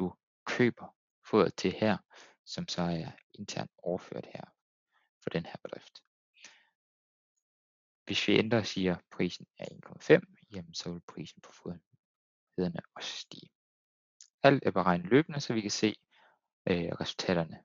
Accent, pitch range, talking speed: native, 85-110 Hz, 135 wpm